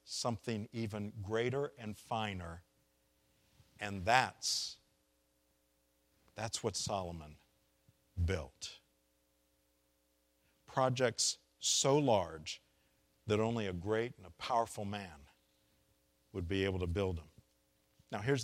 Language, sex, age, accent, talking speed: English, male, 50-69, American, 100 wpm